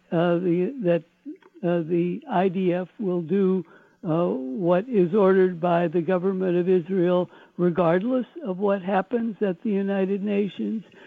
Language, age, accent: English, 60-79, American